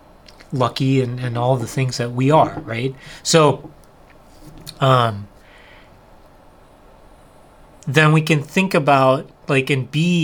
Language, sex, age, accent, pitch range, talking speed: English, male, 30-49, American, 120-150 Hz, 115 wpm